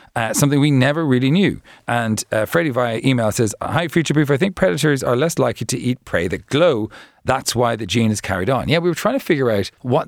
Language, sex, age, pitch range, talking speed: English, male, 40-59, 105-145 Hz, 245 wpm